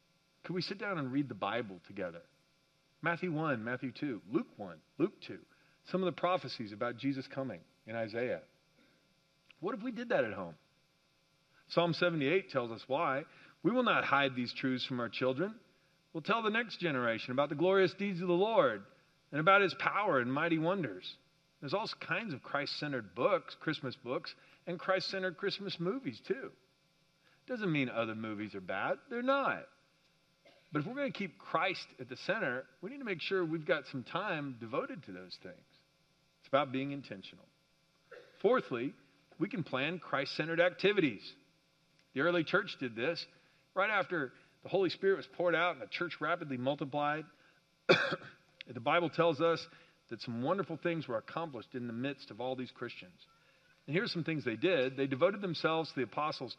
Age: 40-59